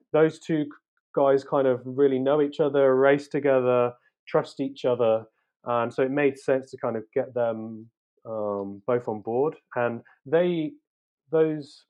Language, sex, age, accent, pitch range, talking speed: English, male, 30-49, British, 110-140 Hz, 160 wpm